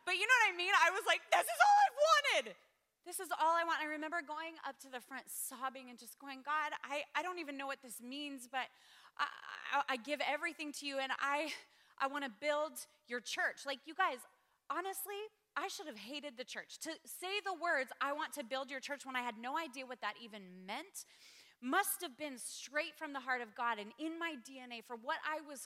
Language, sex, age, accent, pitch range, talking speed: English, female, 30-49, American, 265-330 Hz, 235 wpm